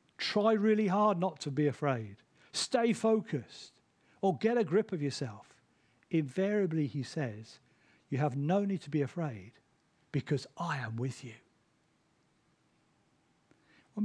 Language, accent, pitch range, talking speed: English, British, 130-180 Hz, 130 wpm